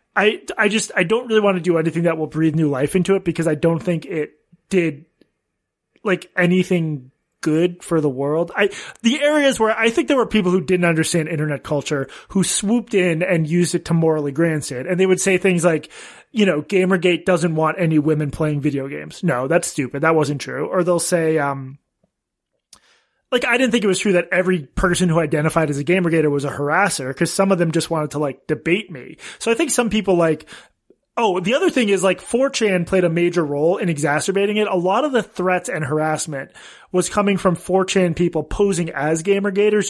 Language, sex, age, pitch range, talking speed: English, male, 30-49, 160-195 Hz, 215 wpm